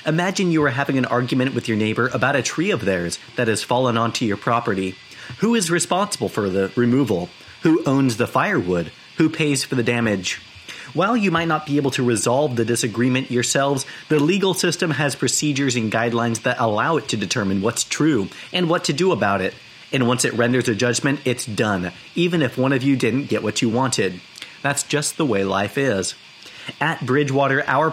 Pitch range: 115-150 Hz